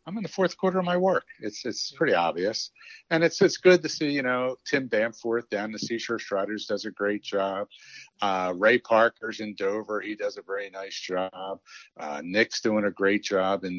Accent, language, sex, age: American, English, male, 50-69